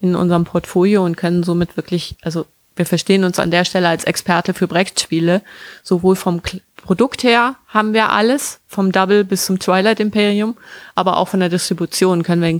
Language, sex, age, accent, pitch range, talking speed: German, female, 30-49, German, 175-200 Hz, 190 wpm